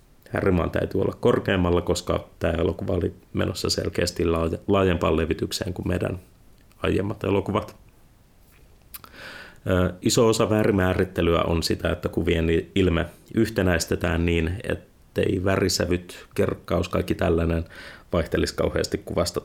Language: Finnish